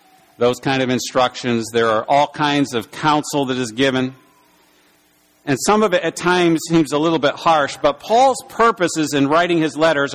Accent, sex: American, male